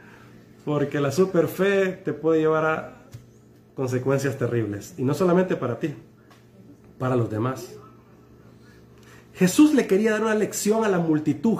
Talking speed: 140 wpm